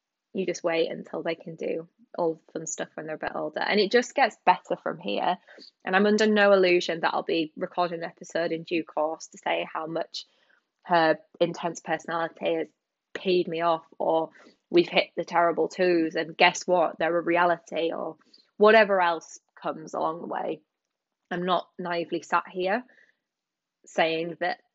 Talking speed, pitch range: 175 wpm, 170-215 Hz